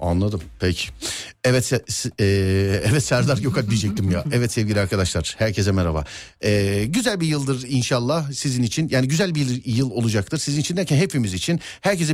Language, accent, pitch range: Turkish, native, 95-150 Hz